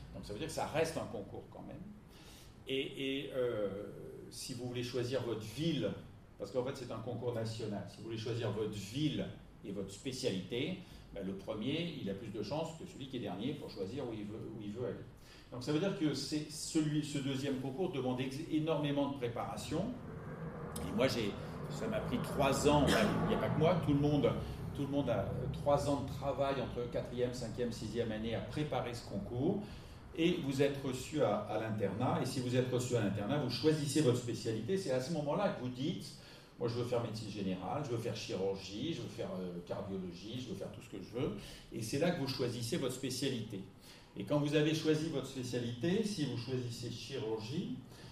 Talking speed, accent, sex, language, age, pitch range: 220 wpm, French, male, French, 50-69, 115-145 Hz